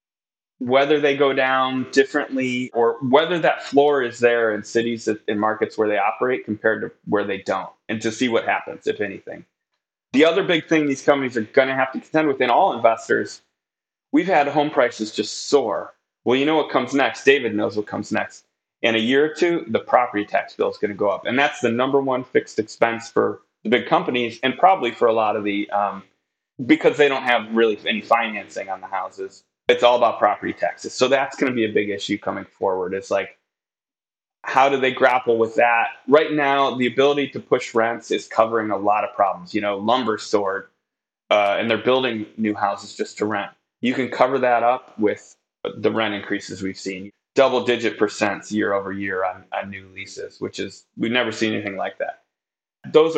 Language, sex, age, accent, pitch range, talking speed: English, male, 30-49, American, 110-145 Hz, 210 wpm